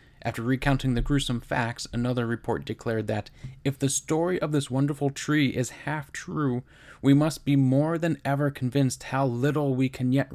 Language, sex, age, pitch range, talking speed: English, male, 20-39, 115-135 Hz, 180 wpm